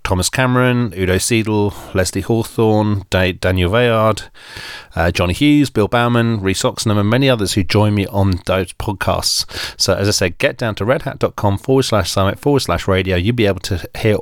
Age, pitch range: 40-59, 95-120 Hz